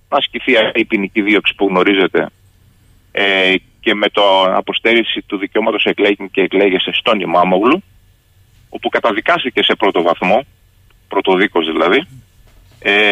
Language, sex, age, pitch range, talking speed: Greek, male, 30-49, 95-110 Hz, 120 wpm